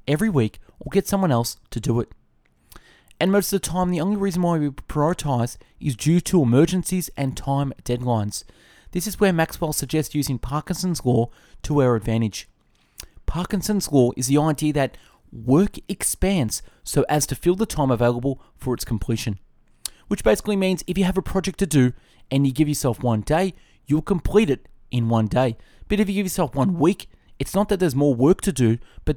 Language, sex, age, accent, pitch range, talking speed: English, male, 20-39, Australian, 120-175 Hz, 195 wpm